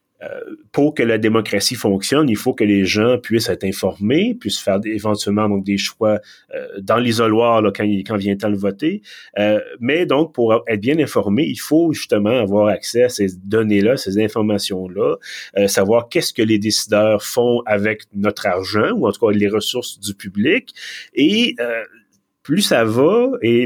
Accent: Canadian